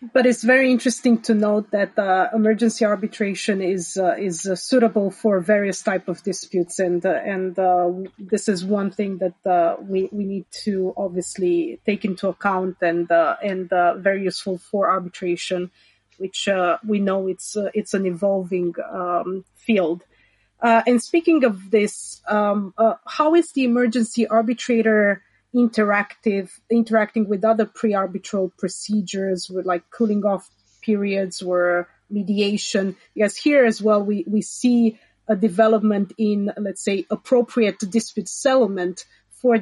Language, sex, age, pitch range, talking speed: English, female, 30-49, 185-220 Hz, 150 wpm